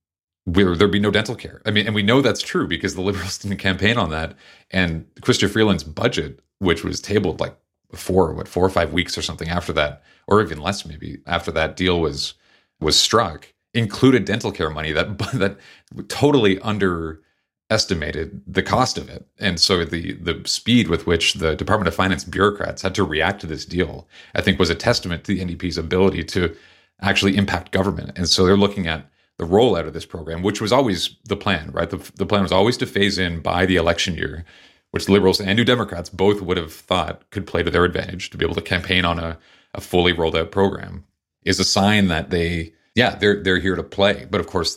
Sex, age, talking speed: male, 30-49, 215 wpm